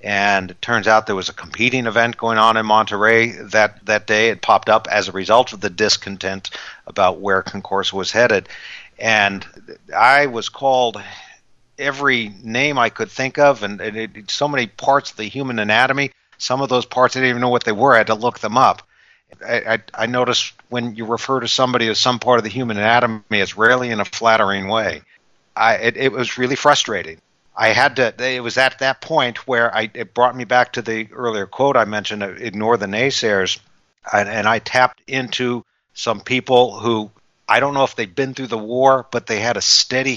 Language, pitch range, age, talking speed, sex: English, 110-130 Hz, 50-69, 205 wpm, male